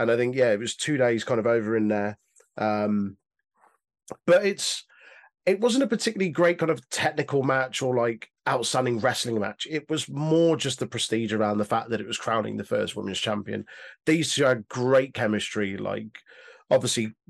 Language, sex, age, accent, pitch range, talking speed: English, male, 30-49, British, 105-135 Hz, 185 wpm